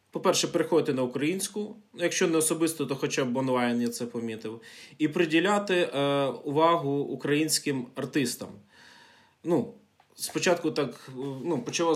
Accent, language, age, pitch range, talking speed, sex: native, Ukrainian, 20-39, 120-155 Hz, 115 wpm, male